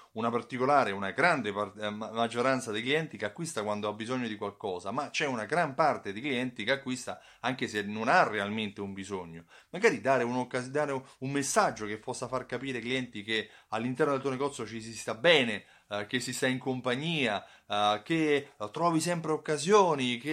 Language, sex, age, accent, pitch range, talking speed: Italian, male, 30-49, native, 110-155 Hz, 190 wpm